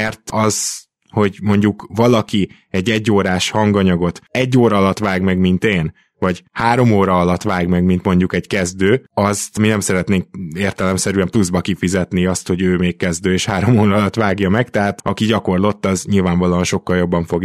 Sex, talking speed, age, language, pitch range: male, 175 wpm, 20-39, Hungarian, 95-110 Hz